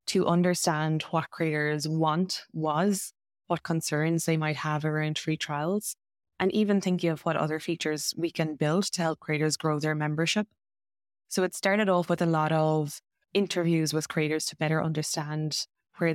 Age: 20-39